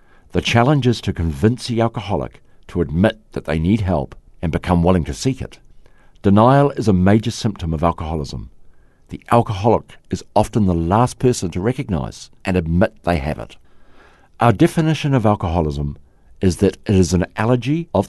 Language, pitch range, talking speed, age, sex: English, 90-120 Hz, 170 wpm, 50-69, male